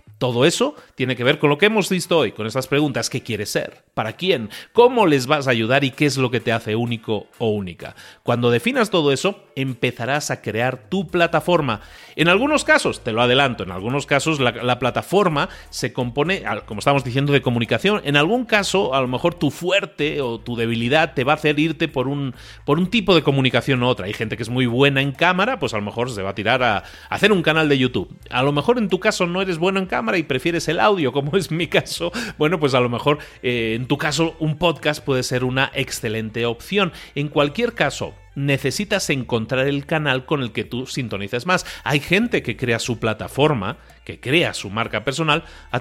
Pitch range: 120-165 Hz